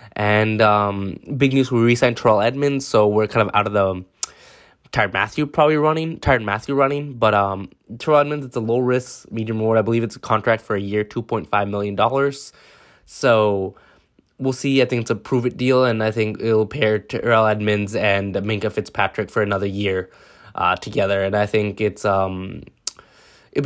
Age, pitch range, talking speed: 20-39, 100-125 Hz, 180 wpm